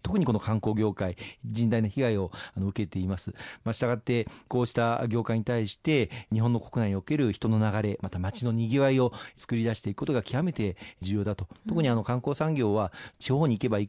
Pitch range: 100-125 Hz